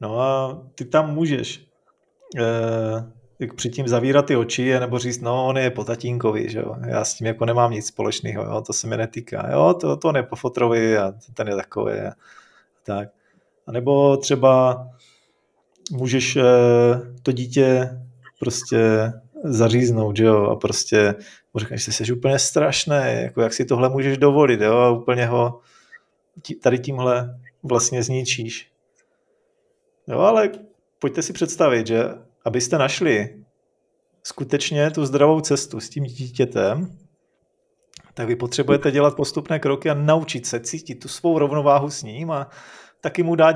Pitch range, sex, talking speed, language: 120-155 Hz, male, 155 wpm, Czech